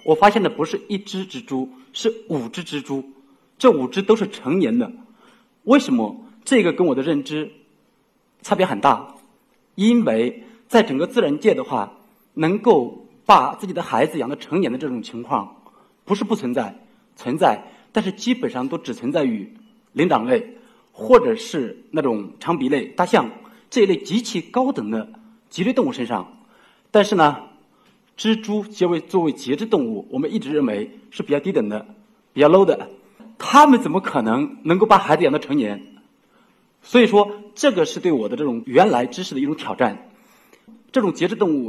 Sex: male